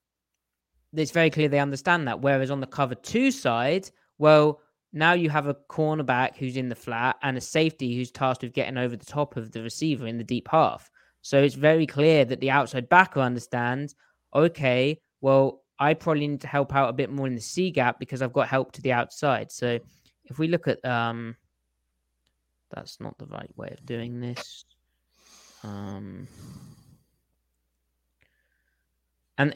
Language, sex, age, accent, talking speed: English, male, 20-39, British, 175 wpm